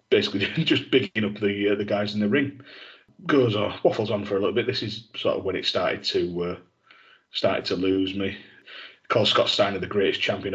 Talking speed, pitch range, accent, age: 215 wpm, 95-105 Hz, British, 30-49